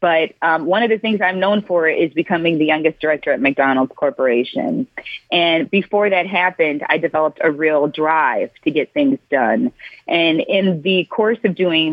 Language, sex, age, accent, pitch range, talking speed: English, female, 30-49, American, 150-185 Hz, 180 wpm